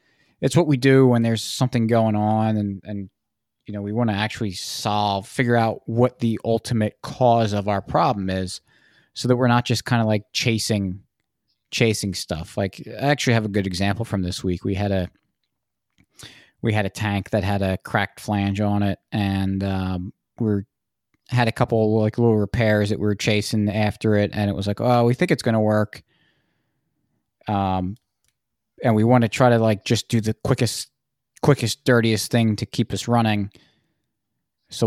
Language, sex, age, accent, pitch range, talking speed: English, male, 20-39, American, 100-120 Hz, 190 wpm